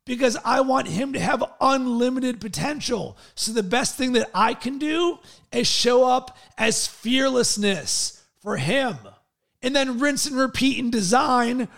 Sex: male